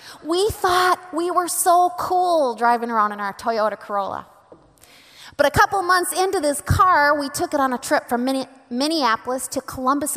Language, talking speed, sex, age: English, 170 wpm, female, 30-49